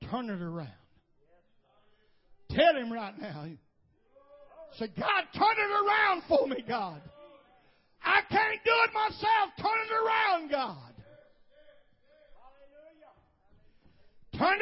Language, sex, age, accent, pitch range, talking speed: English, male, 50-69, American, 235-395 Hz, 105 wpm